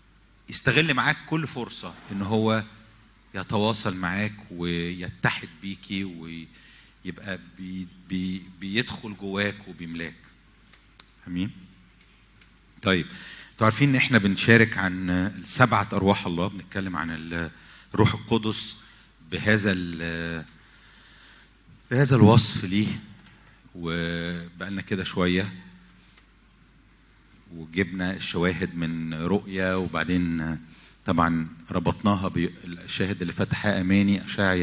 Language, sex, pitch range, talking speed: English, male, 90-115 Hz, 85 wpm